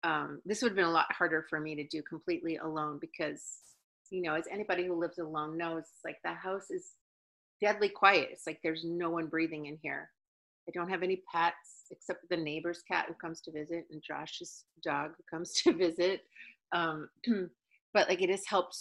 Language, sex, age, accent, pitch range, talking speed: English, female, 40-59, American, 160-195 Hz, 200 wpm